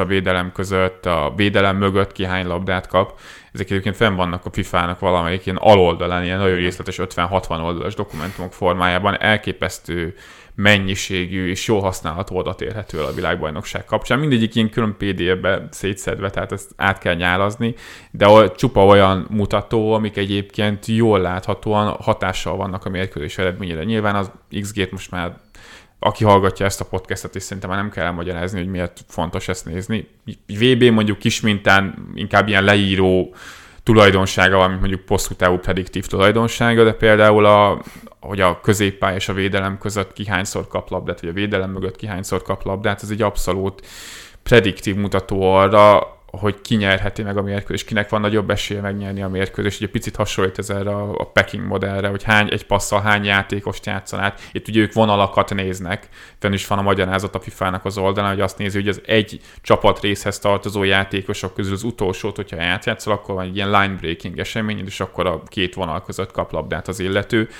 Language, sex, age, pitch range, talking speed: Hungarian, male, 20-39, 95-105 Hz, 170 wpm